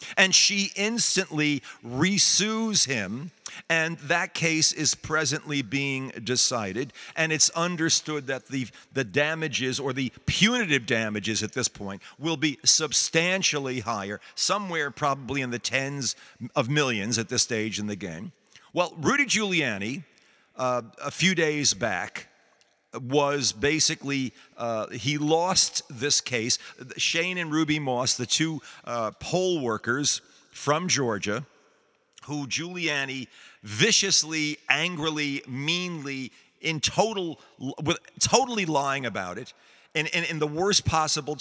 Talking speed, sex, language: 125 wpm, male, English